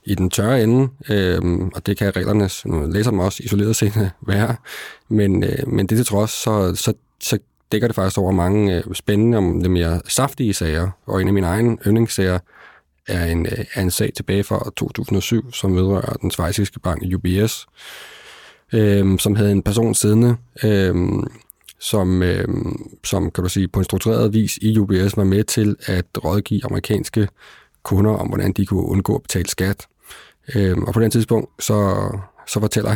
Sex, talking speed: male, 175 wpm